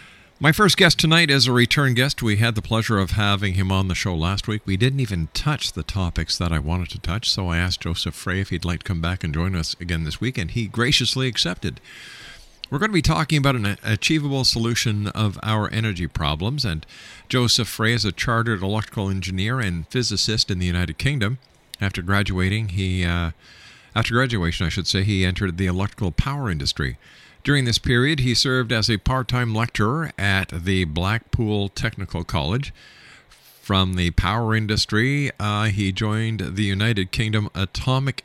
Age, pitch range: 50-69, 90-120 Hz